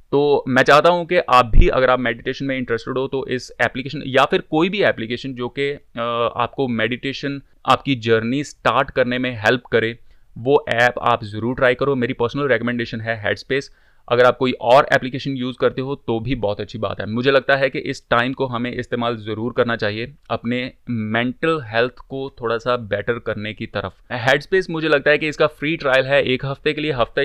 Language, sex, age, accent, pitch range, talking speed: Hindi, male, 30-49, native, 120-140 Hz, 205 wpm